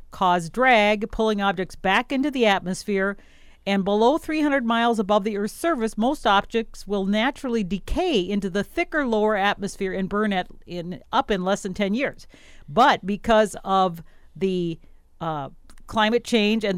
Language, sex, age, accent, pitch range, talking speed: English, female, 50-69, American, 190-235 Hz, 155 wpm